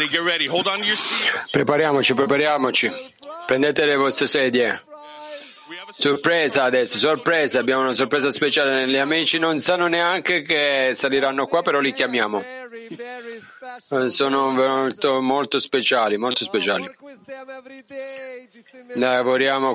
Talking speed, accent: 95 wpm, native